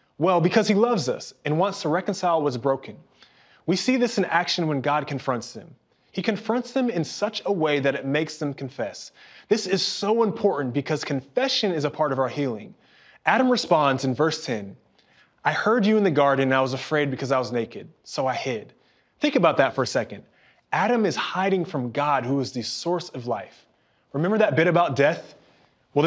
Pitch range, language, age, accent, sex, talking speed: 140-190 Hz, English, 20-39, American, male, 205 wpm